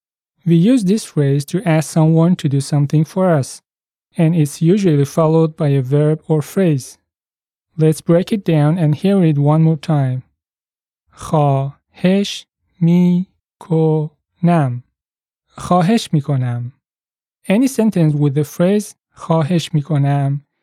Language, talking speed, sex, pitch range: English, 115 wpm, male, 145-180 Hz